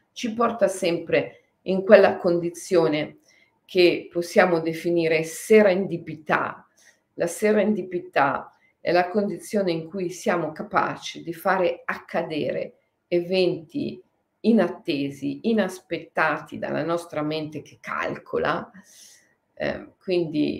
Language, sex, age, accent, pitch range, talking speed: Italian, female, 50-69, native, 170-200 Hz, 95 wpm